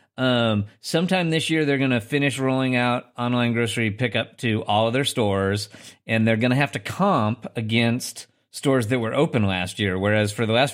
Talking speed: 200 wpm